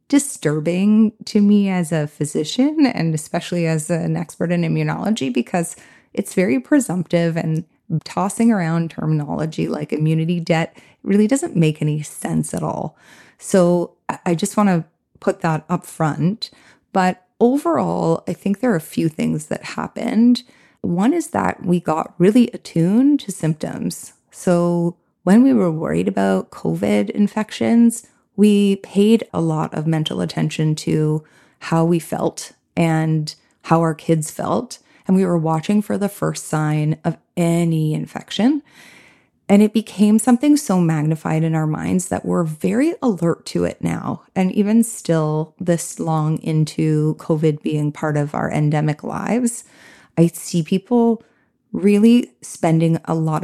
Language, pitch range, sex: English, 155-210 Hz, female